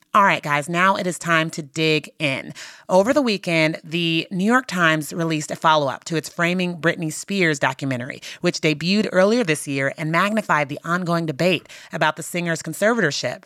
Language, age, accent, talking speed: English, 30-49, American, 180 wpm